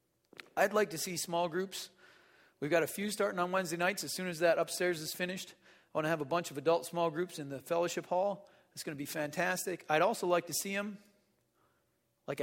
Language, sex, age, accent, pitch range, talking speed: English, male, 40-59, American, 170-225 Hz, 225 wpm